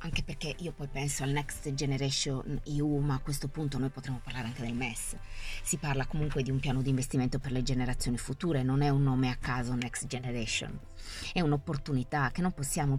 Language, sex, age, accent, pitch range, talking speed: Italian, female, 20-39, native, 140-185 Hz, 205 wpm